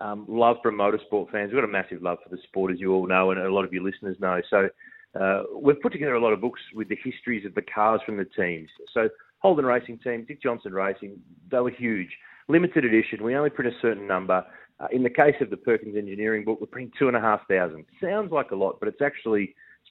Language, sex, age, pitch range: English, male, 30-49, 100-130 Hz